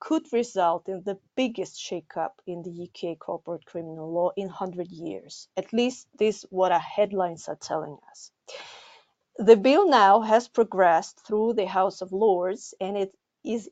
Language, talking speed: English, 165 wpm